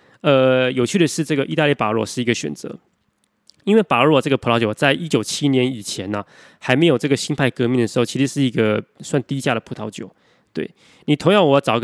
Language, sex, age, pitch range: Chinese, male, 20-39, 115-145 Hz